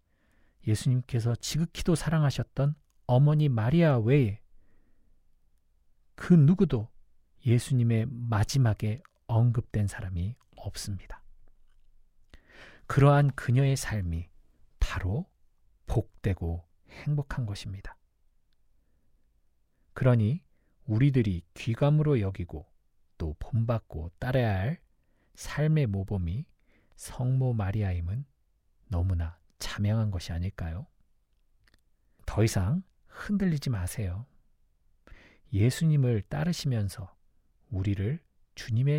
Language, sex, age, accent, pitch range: Korean, male, 40-59, native, 95-135 Hz